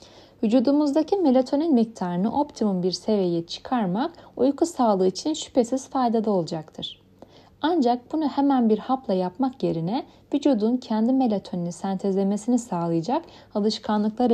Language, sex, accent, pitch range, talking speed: Turkish, female, native, 190-265 Hz, 110 wpm